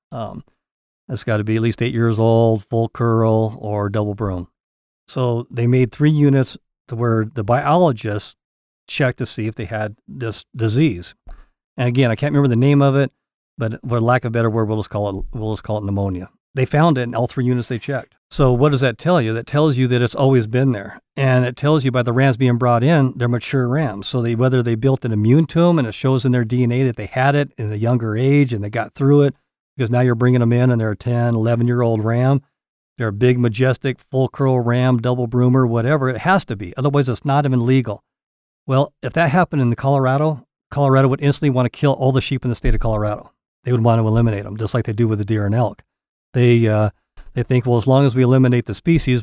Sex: male